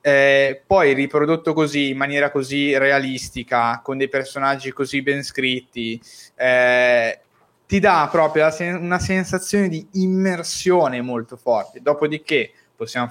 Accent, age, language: native, 20-39, Italian